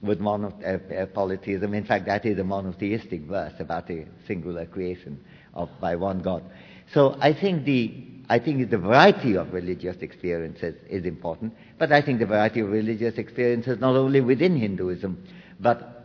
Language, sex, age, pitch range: English, male, 50-69, 100-130 Hz